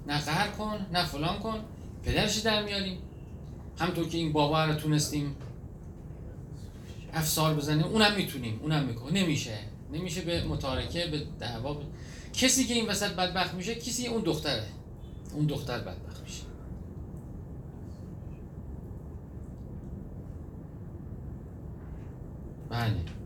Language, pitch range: Persian, 115-155 Hz